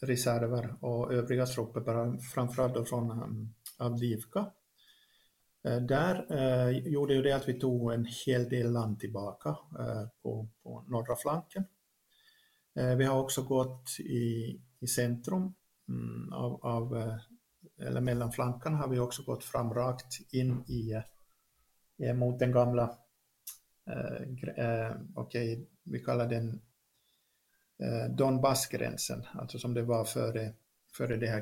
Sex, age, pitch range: male, 50-69, 115-130 Hz